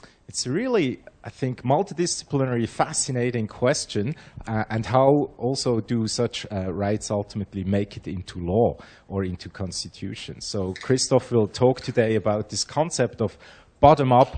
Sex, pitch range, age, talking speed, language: male, 100-125 Hz, 30-49, 140 wpm, English